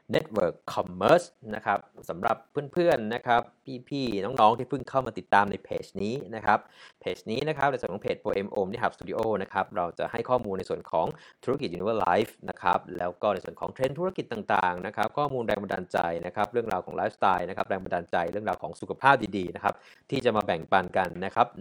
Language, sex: Thai, male